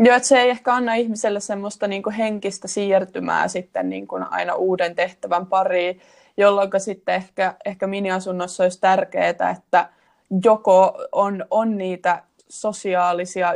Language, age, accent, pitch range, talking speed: Finnish, 20-39, native, 180-205 Hz, 135 wpm